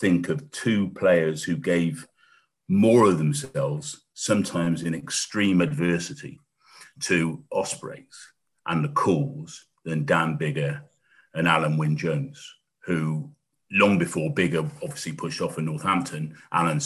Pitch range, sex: 80-105 Hz, male